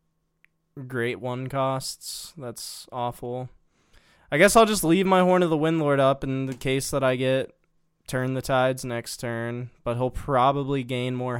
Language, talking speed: English, 170 wpm